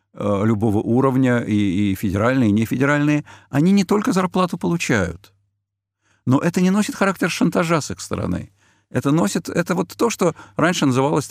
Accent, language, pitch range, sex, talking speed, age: native, Russian, 100-150 Hz, male, 160 wpm, 50-69